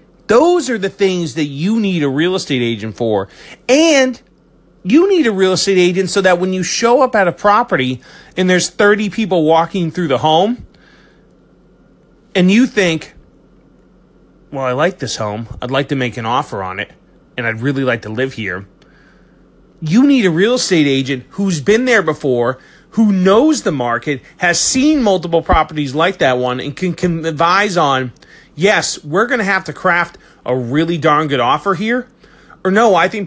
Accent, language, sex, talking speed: American, English, male, 185 wpm